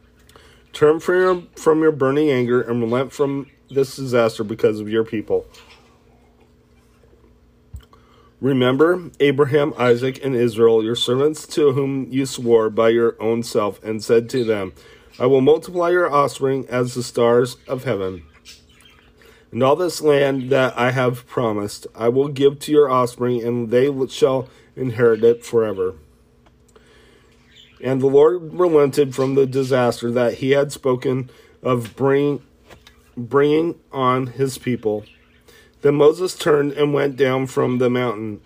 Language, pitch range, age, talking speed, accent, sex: English, 115-140 Hz, 40-59, 140 wpm, American, male